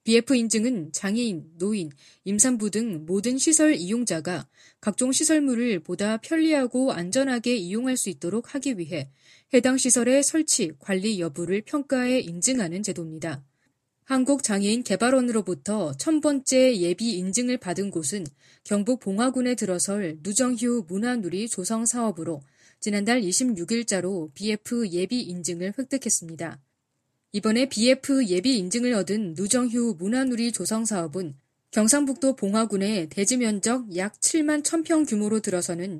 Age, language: 20-39, Korean